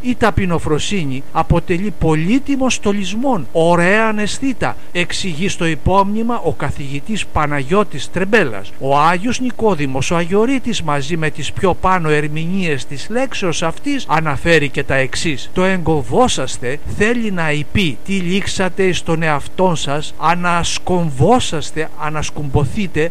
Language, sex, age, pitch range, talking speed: Greek, male, 60-79, 155-215 Hz, 115 wpm